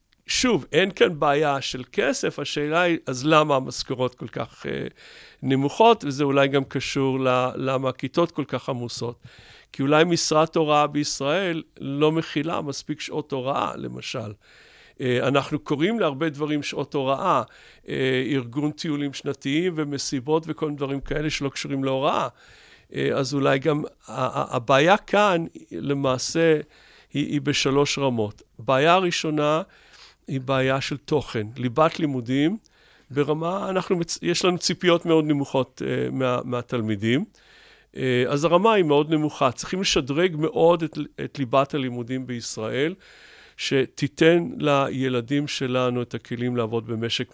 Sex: male